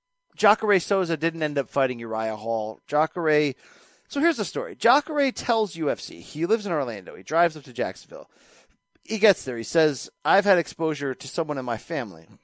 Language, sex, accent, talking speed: English, male, American, 185 wpm